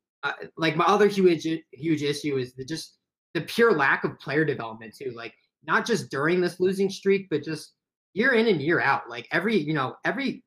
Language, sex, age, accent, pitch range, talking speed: English, male, 20-39, American, 135-175 Hz, 205 wpm